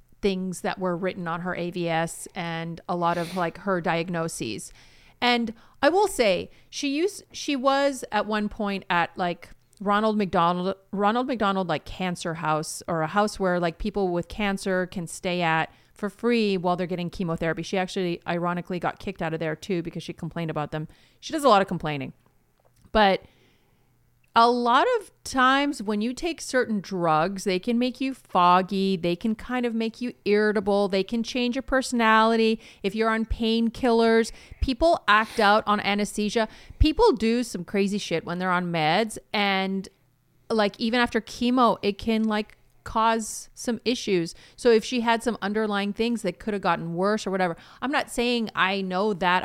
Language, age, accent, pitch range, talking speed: English, 30-49, American, 180-230 Hz, 180 wpm